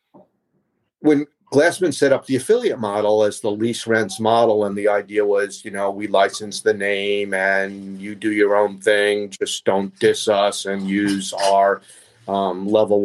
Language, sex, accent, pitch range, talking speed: English, male, American, 100-125 Hz, 165 wpm